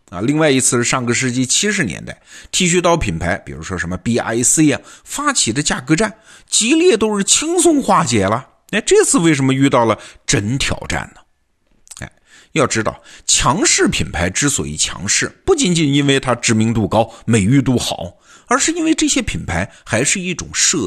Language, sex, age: Chinese, male, 50-69